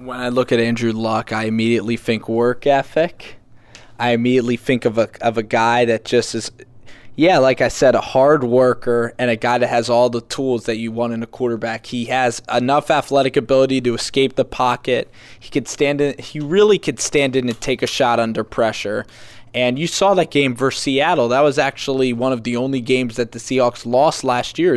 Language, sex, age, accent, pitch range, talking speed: English, male, 20-39, American, 115-130 Hz, 215 wpm